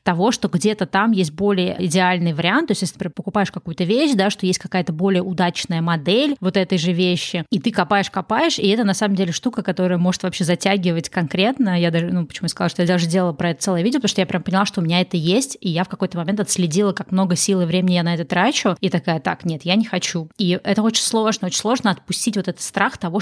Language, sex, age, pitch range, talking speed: Russian, female, 20-39, 175-205 Hz, 250 wpm